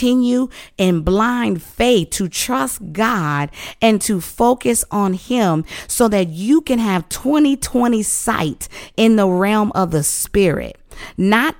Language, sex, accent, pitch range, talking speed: English, female, American, 170-225 Hz, 135 wpm